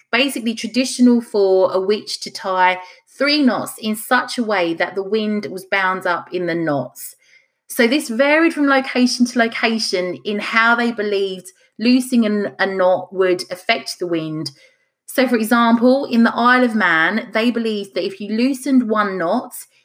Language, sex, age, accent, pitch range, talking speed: English, female, 30-49, British, 185-245 Hz, 170 wpm